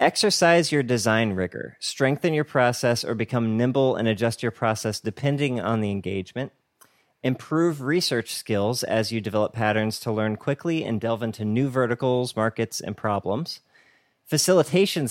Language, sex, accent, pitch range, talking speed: English, male, American, 110-135 Hz, 145 wpm